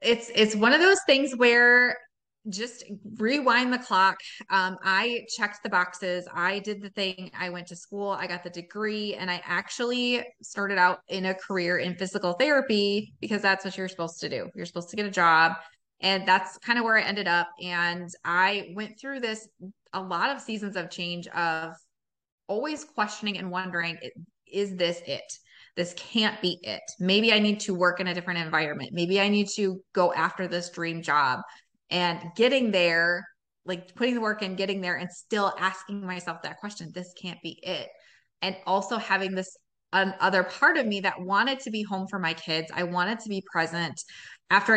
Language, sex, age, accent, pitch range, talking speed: English, female, 20-39, American, 175-210 Hz, 195 wpm